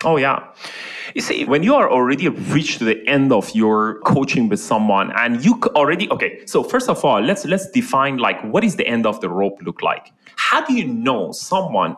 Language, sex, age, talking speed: English, male, 30-49, 215 wpm